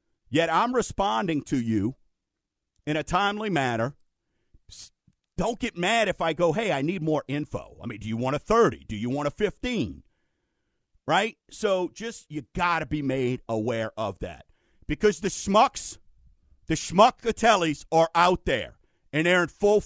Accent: American